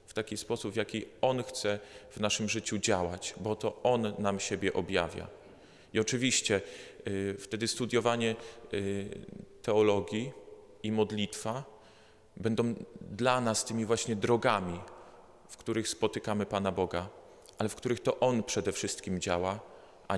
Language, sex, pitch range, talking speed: Polish, male, 95-115 Hz, 130 wpm